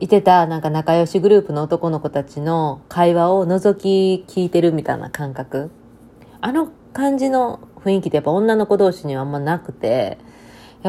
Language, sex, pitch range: Japanese, female, 140-185 Hz